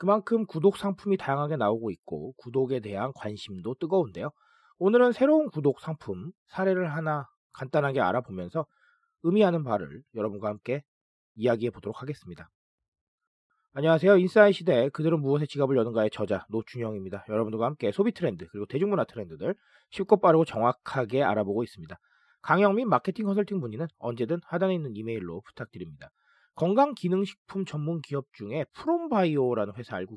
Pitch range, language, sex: 125-195 Hz, Korean, male